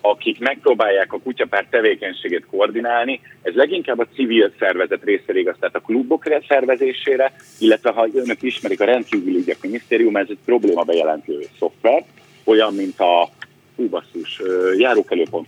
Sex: male